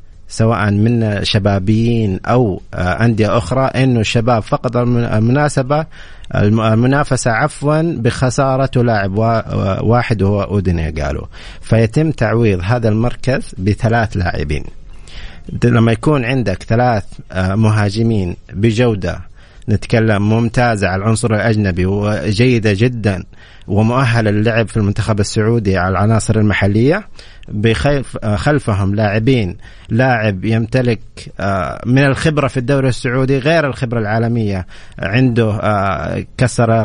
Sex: male